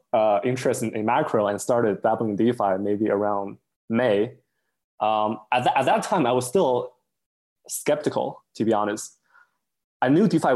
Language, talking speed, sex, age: English, 160 wpm, male, 20-39